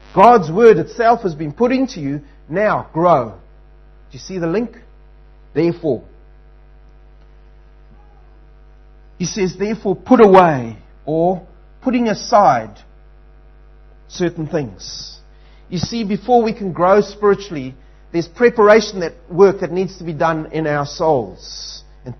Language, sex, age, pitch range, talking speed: English, male, 30-49, 155-205 Hz, 125 wpm